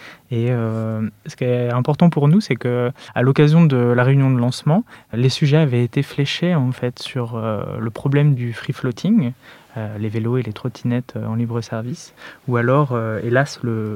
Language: French